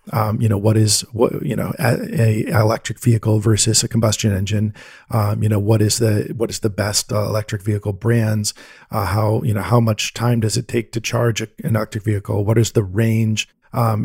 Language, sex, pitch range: English, male, 110-125 Hz